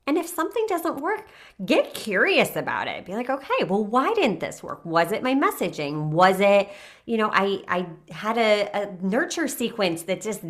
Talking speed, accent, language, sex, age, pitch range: 195 wpm, American, English, female, 30-49, 195-295 Hz